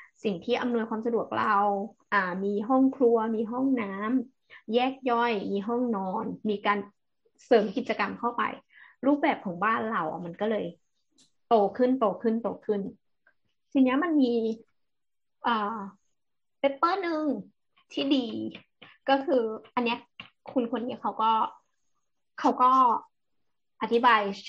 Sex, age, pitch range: female, 20-39, 205-260 Hz